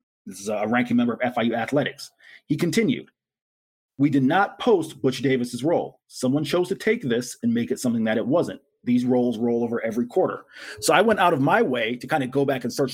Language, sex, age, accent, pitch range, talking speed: English, male, 30-49, American, 120-190 Hz, 225 wpm